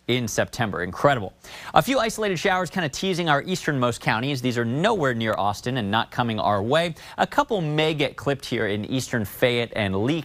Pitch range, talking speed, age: 110-165 Hz, 200 wpm, 30-49